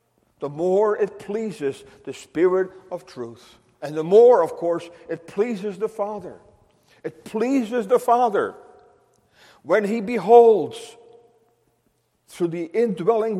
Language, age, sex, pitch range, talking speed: English, 50-69, male, 175-235 Hz, 120 wpm